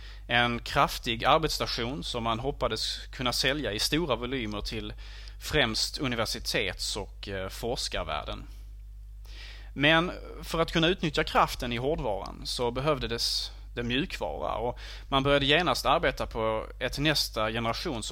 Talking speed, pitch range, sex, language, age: 125 wpm, 100-135 Hz, male, Swedish, 30-49